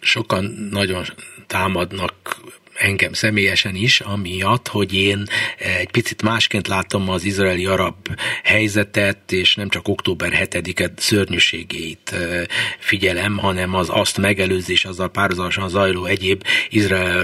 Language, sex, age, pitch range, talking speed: Hungarian, male, 60-79, 95-120 Hz, 115 wpm